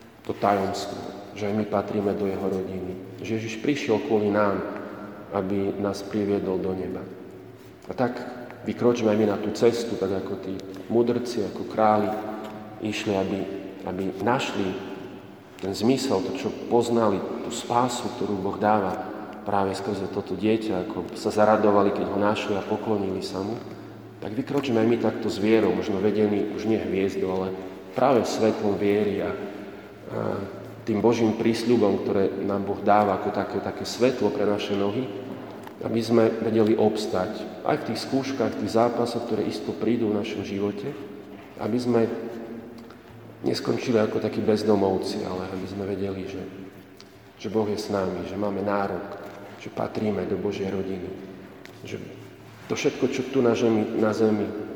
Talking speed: 155 wpm